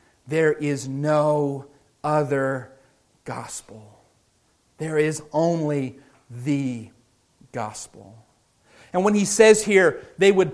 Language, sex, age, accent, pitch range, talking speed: English, male, 30-49, American, 155-225 Hz, 95 wpm